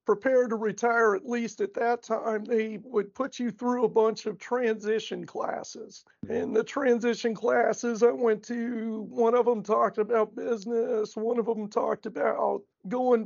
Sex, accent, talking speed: male, American, 170 wpm